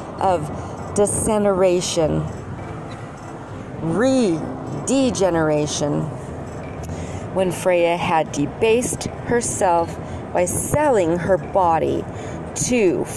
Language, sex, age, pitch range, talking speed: English, female, 40-59, 150-195 Hz, 60 wpm